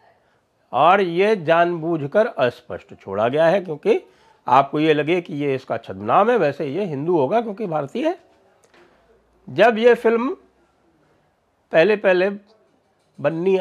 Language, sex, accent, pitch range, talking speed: English, male, Indian, 150-225 Hz, 125 wpm